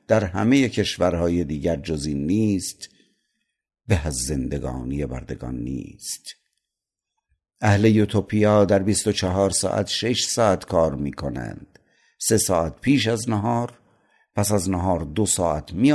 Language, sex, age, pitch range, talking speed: Persian, male, 50-69, 85-105 Hz, 120 wpm